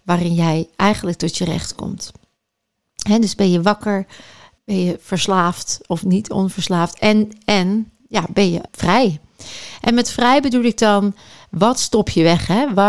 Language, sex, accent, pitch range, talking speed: Dutch, female, Dutch, 175-210 Hz, 150 wpm